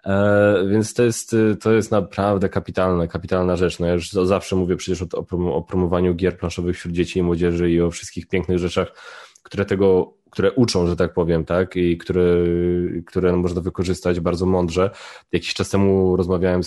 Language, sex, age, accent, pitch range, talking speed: Polish, male, 20-39, native, 90-110 Hz, 175 wpm